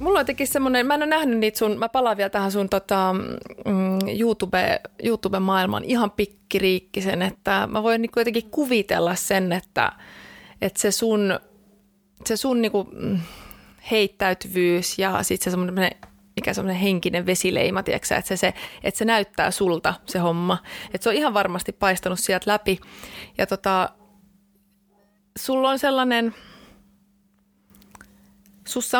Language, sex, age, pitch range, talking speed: Finnish, female, 30-49, 185-220 Hz, 130 wpm